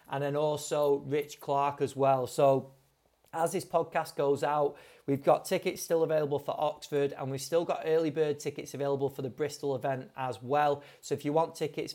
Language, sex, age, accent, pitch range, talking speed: English, male, 30-49, British, 135-165 Hz, 195 wpm